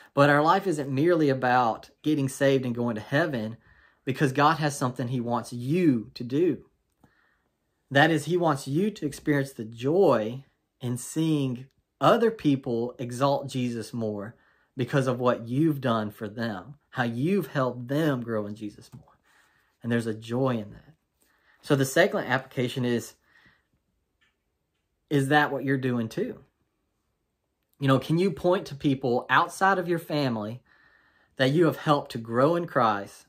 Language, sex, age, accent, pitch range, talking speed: English, male, 30-49, American, 120-145 Hz, 160 wpm